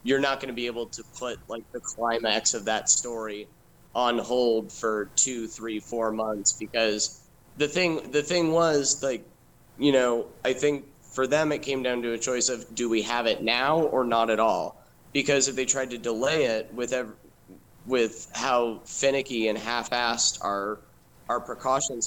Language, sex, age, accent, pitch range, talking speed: English, male, 30-49, American, 110-130 Hz, 180 wpm